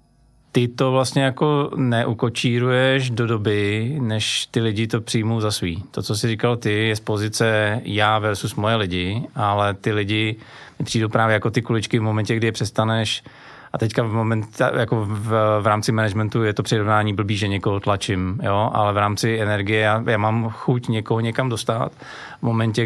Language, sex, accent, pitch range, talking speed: Czech, male, native, 105-125 Hz, 180 wpm